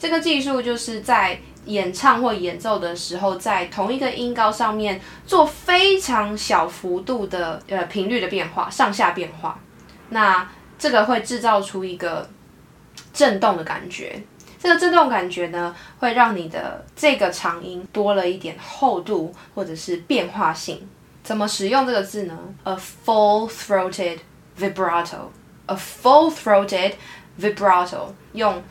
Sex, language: female, Chinese